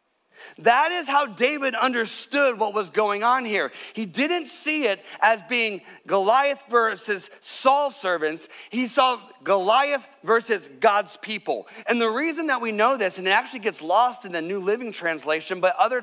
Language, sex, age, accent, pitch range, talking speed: English, male, 30-49, American, 195-265 Hz, 170 wpm